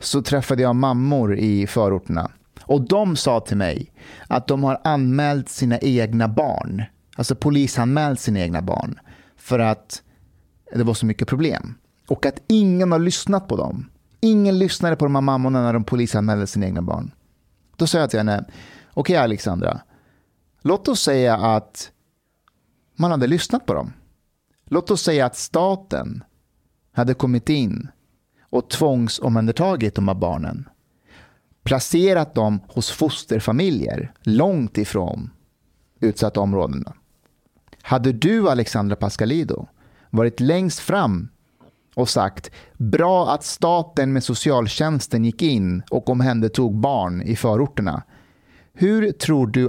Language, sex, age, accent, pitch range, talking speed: Swedish, male, 30-49, native, 110-150 Hz, 135 wpm